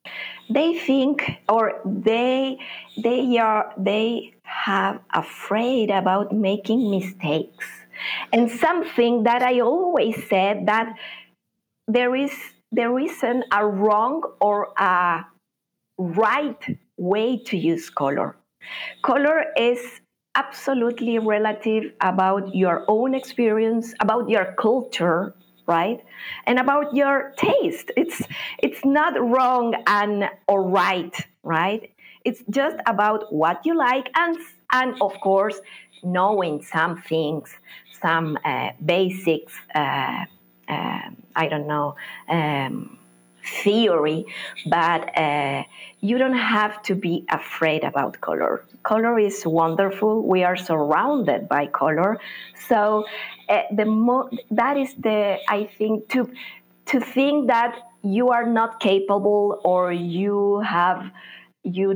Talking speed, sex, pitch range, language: 115 wpm, female, 185-240 Hz, English